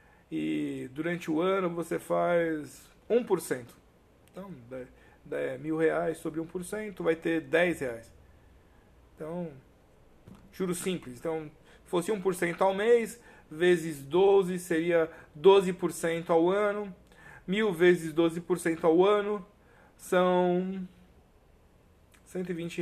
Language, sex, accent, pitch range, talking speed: Portuguese, male, Brazilian, 130-185 Hz, 100 wpm